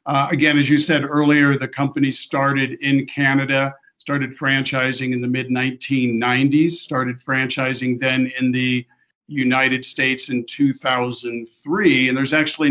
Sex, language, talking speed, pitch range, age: male, English, 130 wpm, 125-145 Hz, 50-69